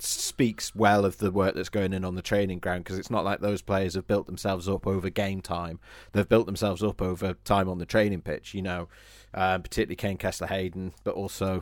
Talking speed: 220 wpm